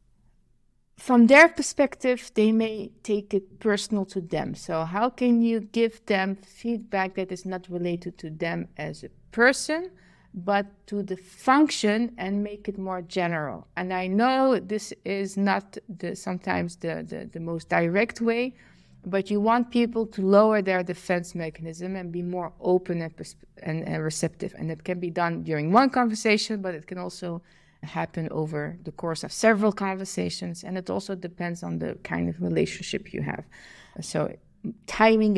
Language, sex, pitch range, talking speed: English, female, 175-220 Hz, 165 wpm